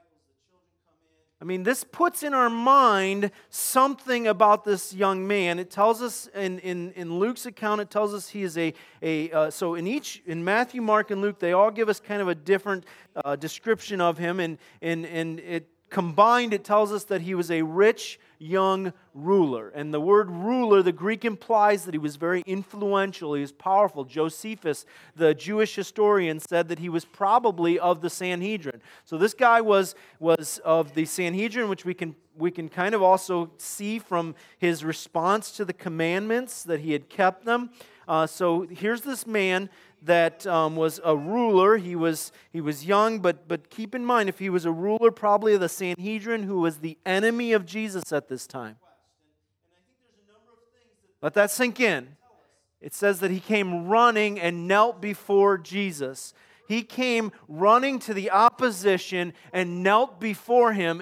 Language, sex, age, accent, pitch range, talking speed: English, male, 40-59, American, 165-215 Hz, 180 wpm